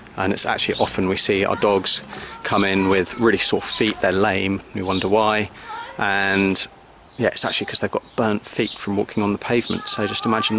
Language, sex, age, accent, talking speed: English, male, 30-49, British, 205 wpm